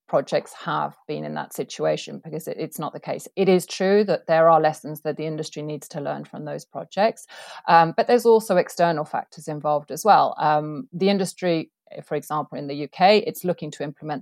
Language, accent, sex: English, British, female